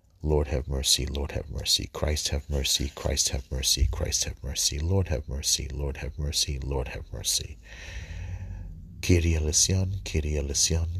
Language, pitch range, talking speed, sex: English, 75-90 Hz, 155 wpm, male